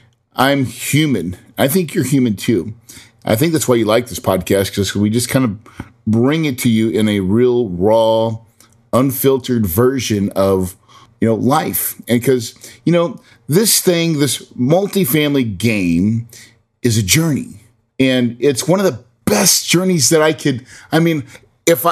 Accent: American